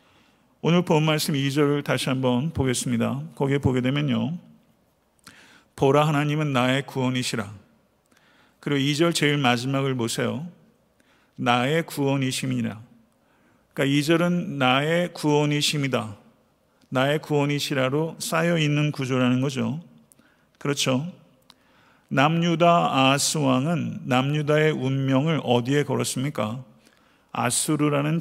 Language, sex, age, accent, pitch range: Korean, male, 50-69, native, 130-155 Hz